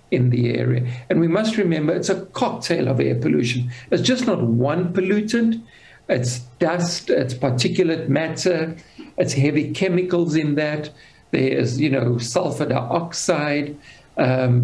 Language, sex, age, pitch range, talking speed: English, male, 60-79, 125-170 Hz, 145 wpm